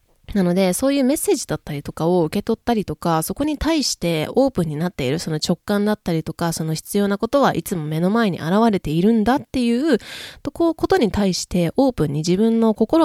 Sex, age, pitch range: female, 20-39, 160-225 Hz